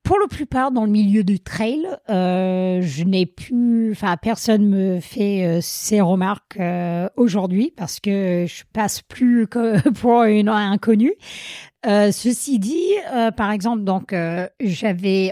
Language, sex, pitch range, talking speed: French, female, 185-235 Hz, 155 wpm